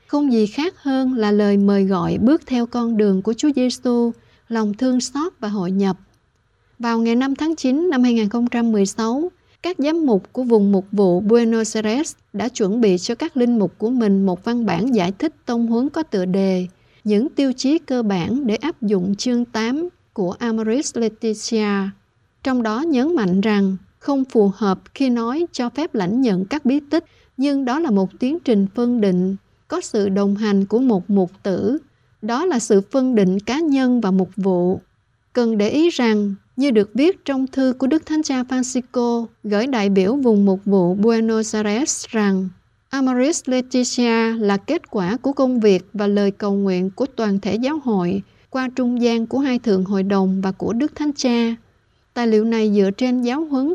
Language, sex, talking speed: Vietnamese, female, 190 wpm